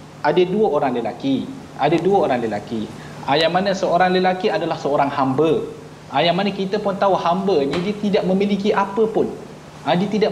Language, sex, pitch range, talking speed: Malayalam, male, 175-220 Hz, 170 wpm